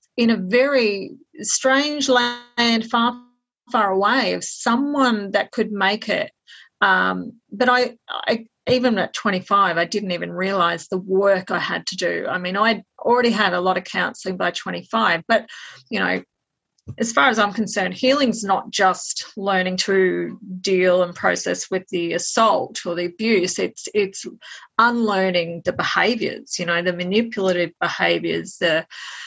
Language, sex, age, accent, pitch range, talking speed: English, female, 30-49, Australian, 185-240 Hz, 155 wpm